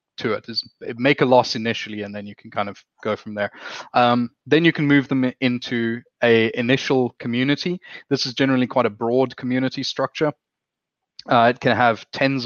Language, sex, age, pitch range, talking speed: English, male, 20-39, 110-125 Hz, 190 wpm